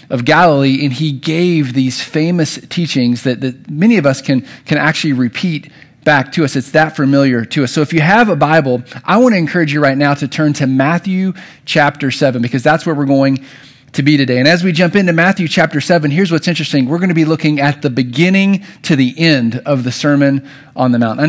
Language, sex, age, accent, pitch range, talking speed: English, male, 40-59, American, 140-180 Hz, 230 wpm